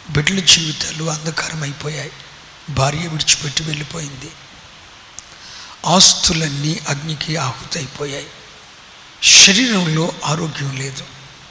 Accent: native